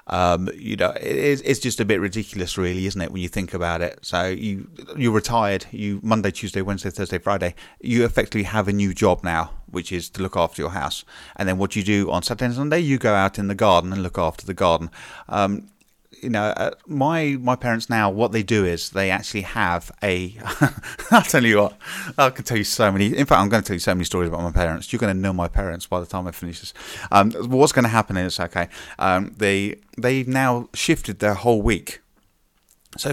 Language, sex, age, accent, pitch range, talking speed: English, male, 30-49, British, 95-130 Hz, 230 wpm